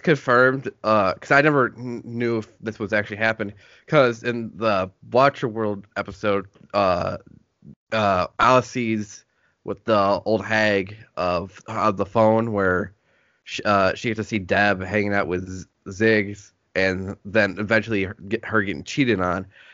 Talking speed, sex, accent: 150 wpm, male, American